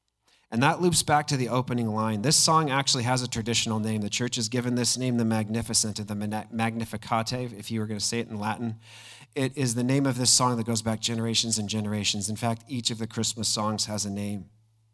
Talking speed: 230 wpm